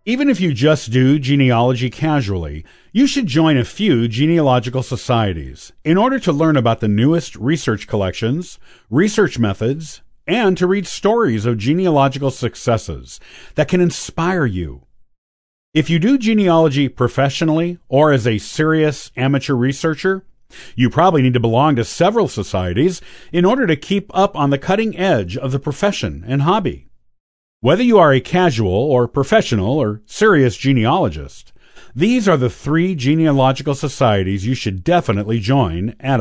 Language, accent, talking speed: English, American, 150 wpm